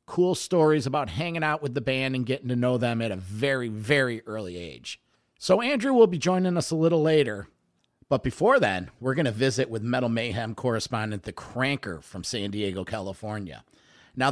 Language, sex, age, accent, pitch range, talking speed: English, male, 50-69, American, 110-150 Hz, 195 wpm